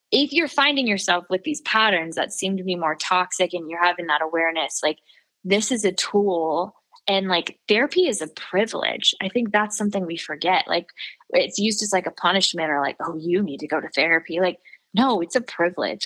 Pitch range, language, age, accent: 165-195 Hz, English, 20-39, American